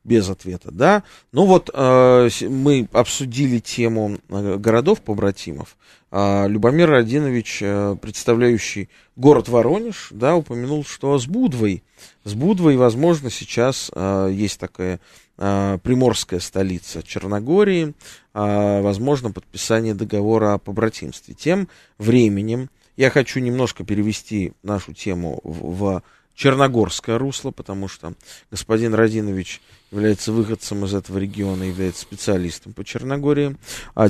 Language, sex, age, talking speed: Russian, male, 20-39, 105 wpm